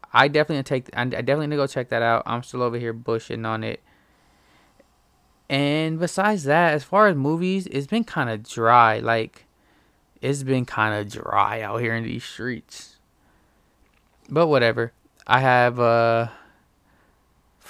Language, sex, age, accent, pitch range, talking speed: English, male, 20-39, American, 115-145 Hz, 155 wpm